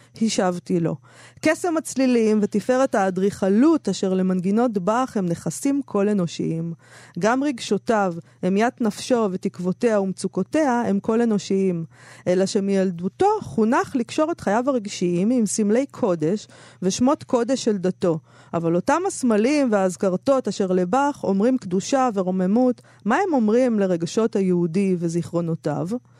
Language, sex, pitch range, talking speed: Hebrew, female, 185-240 Hz, 115 wpm